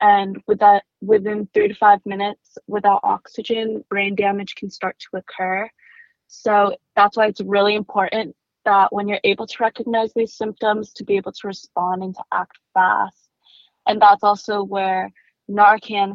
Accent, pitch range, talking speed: American, 190-210 Hz, 165 wpm